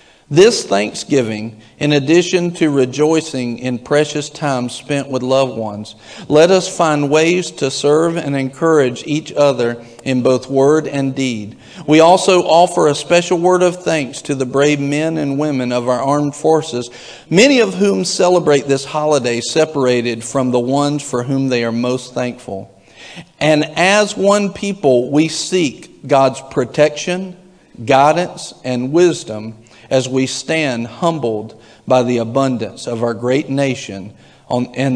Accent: American